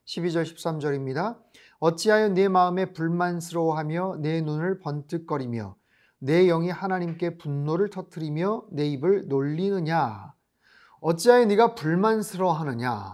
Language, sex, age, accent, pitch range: Korean, male, 30-49, native, 165-205 Hz